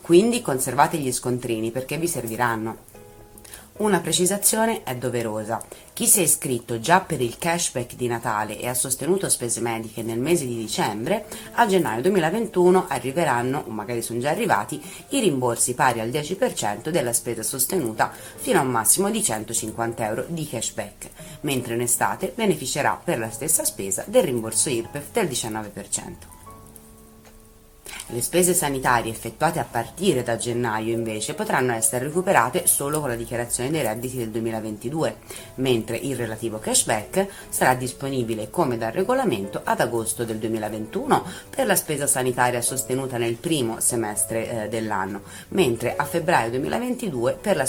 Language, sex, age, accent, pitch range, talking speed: Italian, female, 30-49, native, 115-170 Hz, 145 wpm